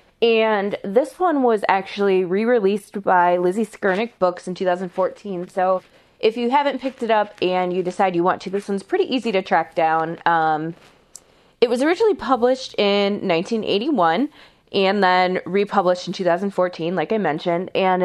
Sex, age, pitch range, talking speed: female, 20-39, 170-220 Hz, 160 wpm